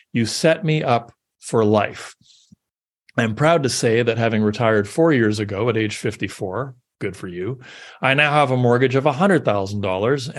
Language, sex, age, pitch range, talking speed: English, male, 40-59, 110-145 Hz, 170 wpm